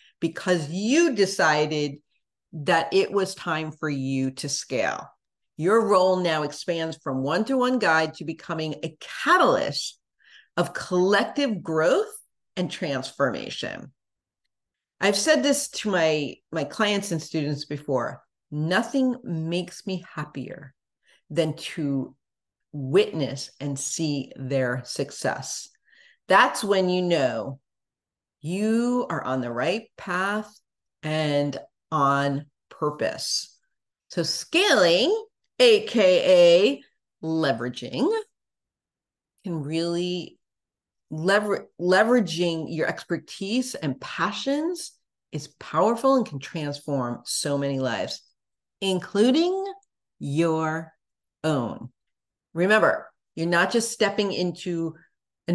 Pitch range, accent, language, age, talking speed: 145-210 Hz, American, English, 50-69, 100 wpm